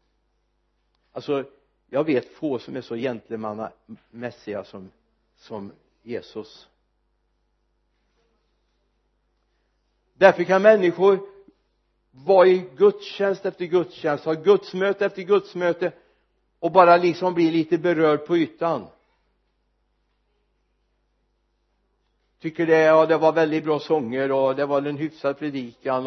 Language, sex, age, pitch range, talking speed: Swedish, male, 60-79, 130-165 Hz, 105 wpm